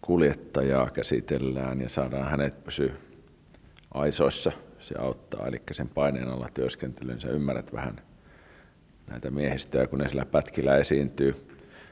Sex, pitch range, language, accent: male, 65-75 Hz, Finnish, native